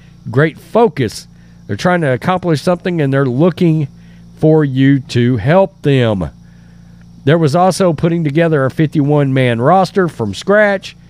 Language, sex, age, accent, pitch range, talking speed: English, male, 40-59, American, 125-180 Hz, 135 wpm